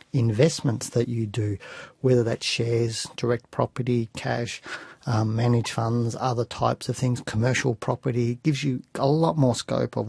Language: English